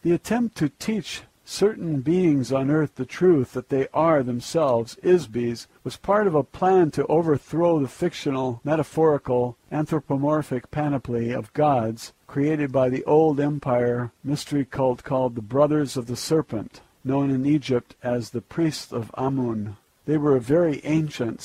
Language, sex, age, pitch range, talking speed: English, male, 60-79, 120-150 Hz, 155 wpm